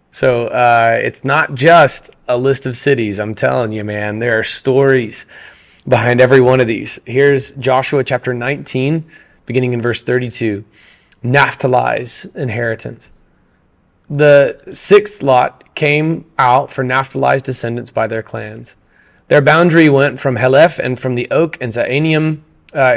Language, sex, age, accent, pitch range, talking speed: English, male, 30-49, American, 120-140 Hz, 140 wpm